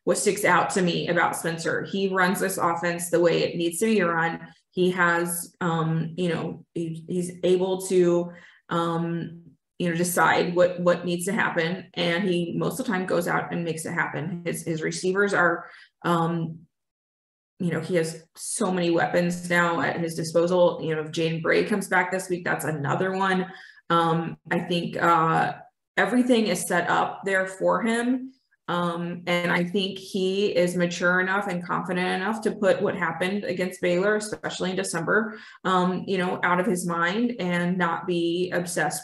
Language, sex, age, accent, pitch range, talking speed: English, female, 20-39, American, 170-185 Hz, 180 wpm